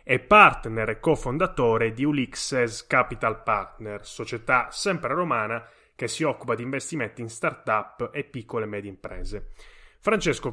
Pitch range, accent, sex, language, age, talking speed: 115-145 Hz, native, male, Italian, 30-49, 135 wpm